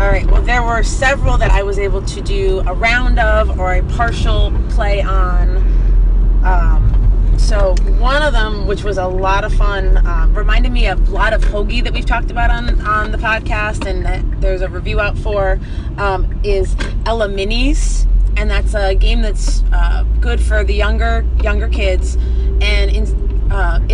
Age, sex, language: 30-49, female, English